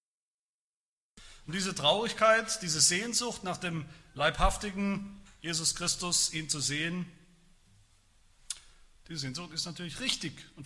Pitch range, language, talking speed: 115-185 Hz, German, 105 wpm